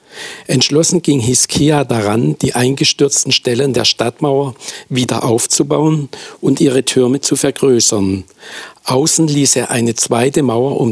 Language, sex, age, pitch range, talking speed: German, male, 60-79, 115-140 Hz, 125 wpm